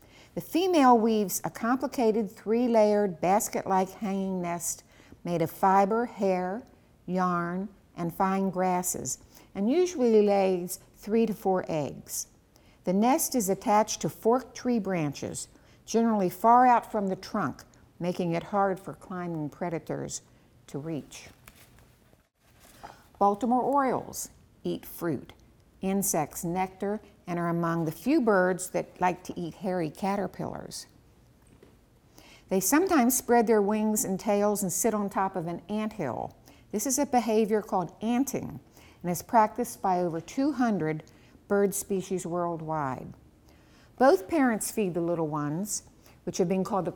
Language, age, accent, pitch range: English, 60-79, American, 175-225 Hz